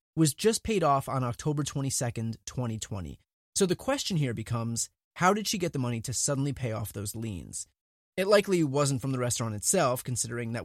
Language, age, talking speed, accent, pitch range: English, 20-39, 190 wpm, American, 125-185 Hz